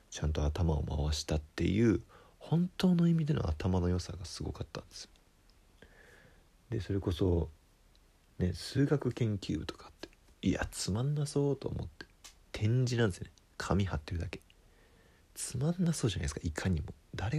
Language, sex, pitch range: Japanese, male, 80-95 Hz